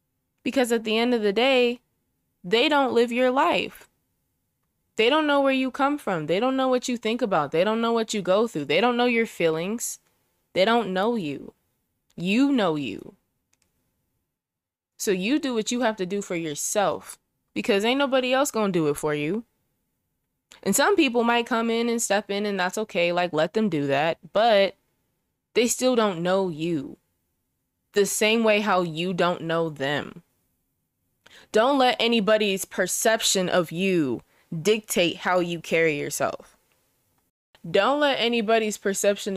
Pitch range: 175-235 Hz